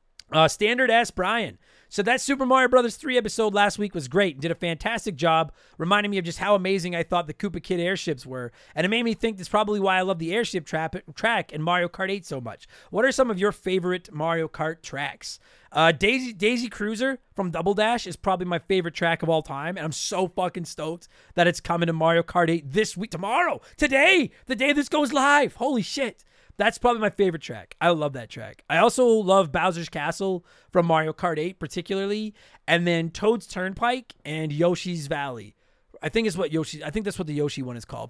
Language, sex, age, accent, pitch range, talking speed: English, male, 30-49, American, 160-210 Hz, 215 wpm